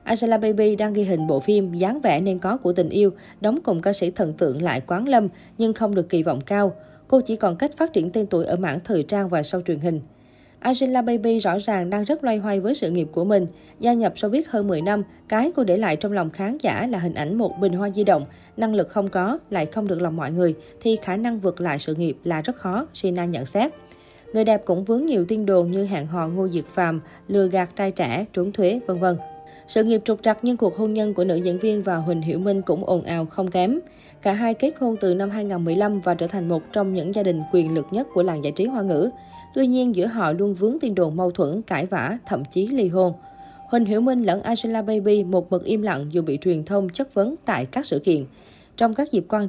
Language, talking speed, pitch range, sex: Vietnamese, 255 wpm, 175-220 Hz, female